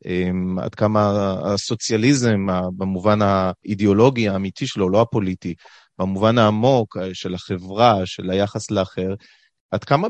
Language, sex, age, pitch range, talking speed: Hebrew, male, 30-49, 110-155 Hz, 105 wpm